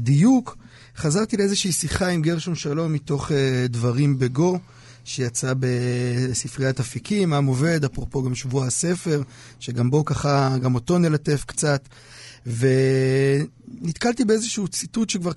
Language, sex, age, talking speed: Hebrew, male, 30-49, 120 wpm